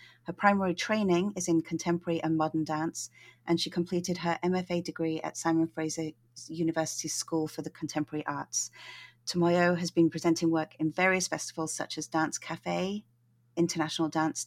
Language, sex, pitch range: English, female, 160-190 Hz